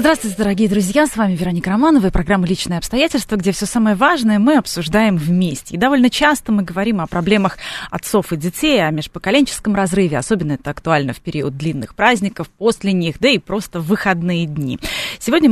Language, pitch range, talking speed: Russian, 165-220 Hz, 180 wpm